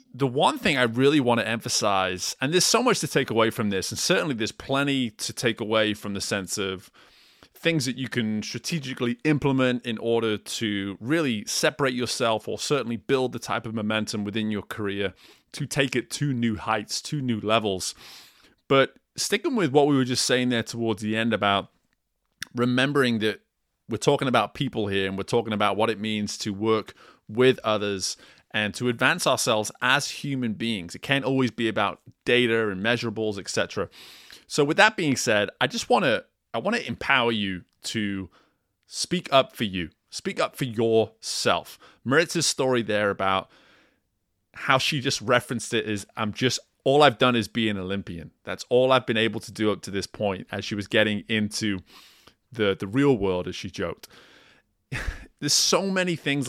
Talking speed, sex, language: 185 wpm, male, English